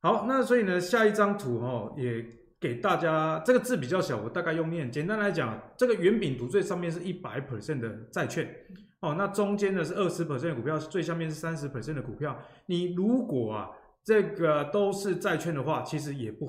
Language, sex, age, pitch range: Chinese, male, 20-39, 130-185 Hz